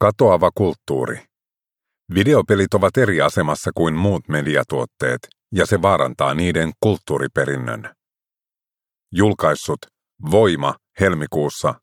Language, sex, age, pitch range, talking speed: Finnish, male, 50-69, 80-100 Hz, 85 wpm